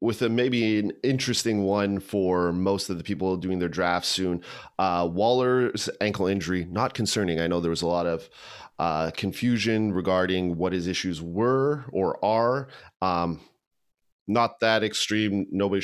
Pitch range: 90-110 Hz